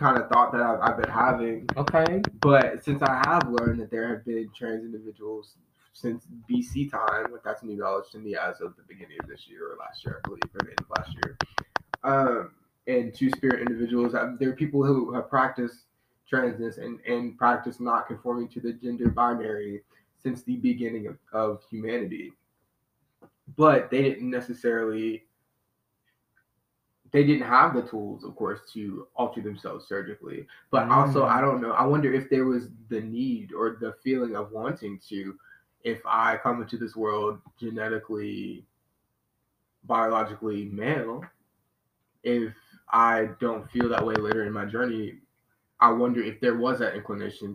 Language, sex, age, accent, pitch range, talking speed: English, male, 20-39, American, 110-125 Hz, 170 wpm